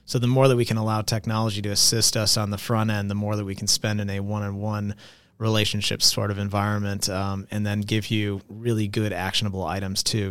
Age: 30-49